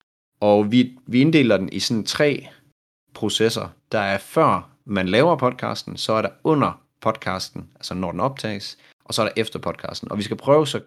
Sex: male